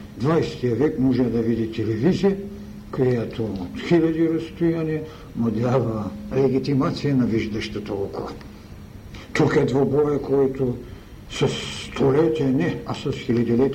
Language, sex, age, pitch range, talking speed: Bulgarian, male, 60-79, 105-150 Hz, 95 wpm